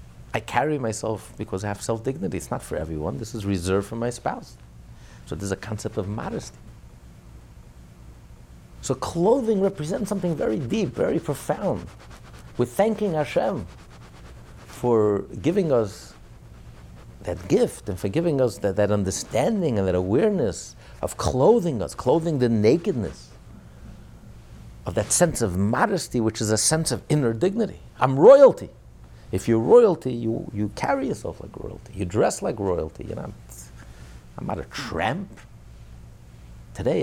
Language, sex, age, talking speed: English, male, 60-79, 145 wpm